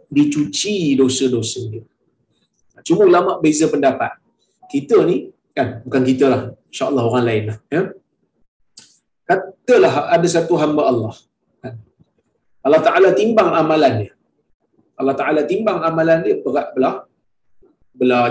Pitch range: 120-155 Hz